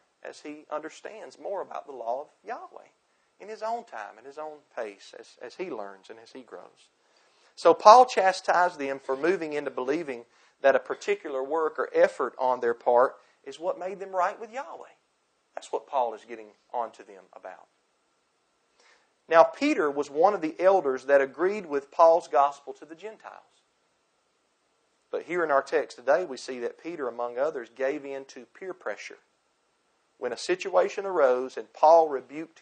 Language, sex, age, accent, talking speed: English, male, 40-59, American, 180 wpm